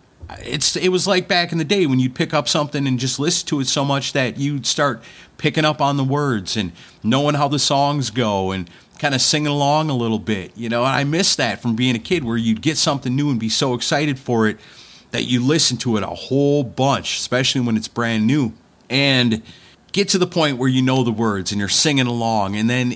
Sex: male